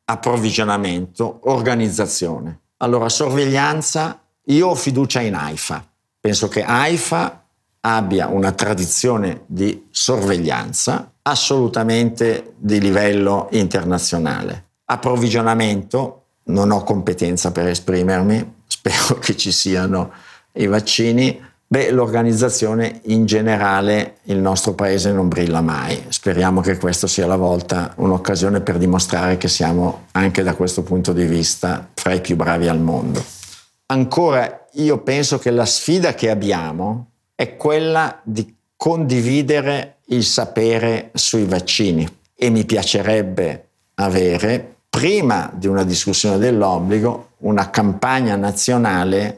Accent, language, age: native, Italian, 50-69